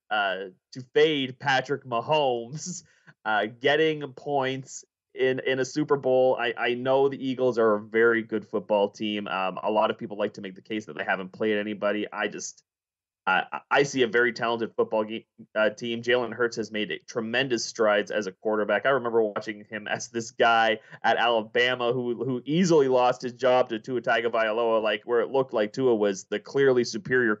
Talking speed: 195 wpm